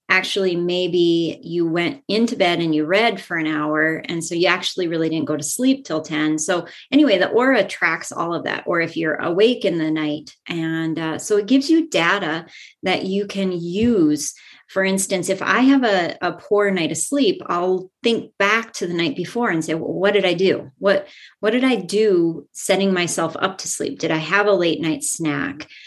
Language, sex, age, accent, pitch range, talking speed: English, female, 30-49, American, 160-195 Hz, 210 wpm